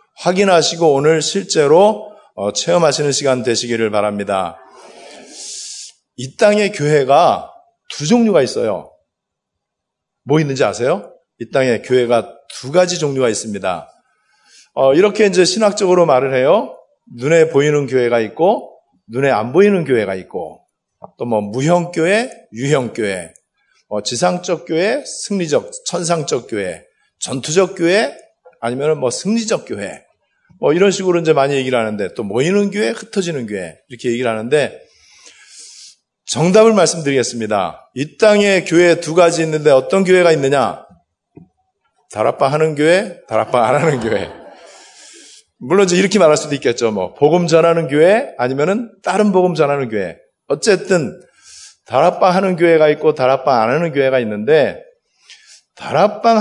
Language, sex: Korean, male